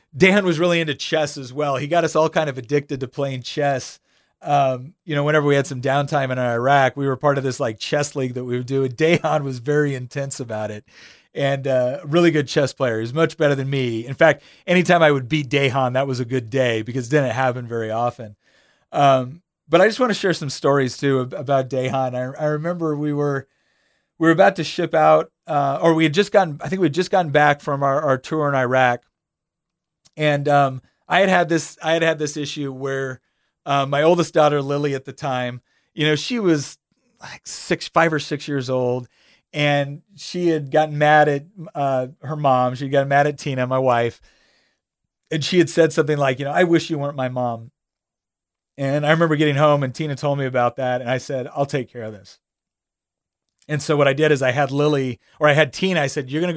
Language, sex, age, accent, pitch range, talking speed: English, male, 30-49, American, 130-155 Hz, 230 wpm